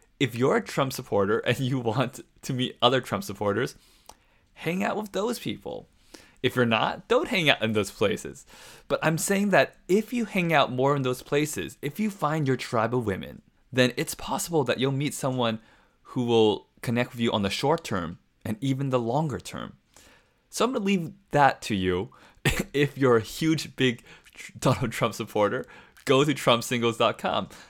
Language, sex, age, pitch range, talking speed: English, male, 20-39, 110-145 Hz, 185 wpm